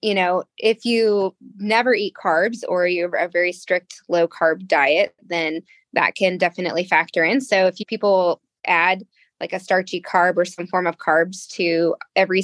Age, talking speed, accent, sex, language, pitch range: 20-39, 185 wpm, American, female, English, 175-215 Hz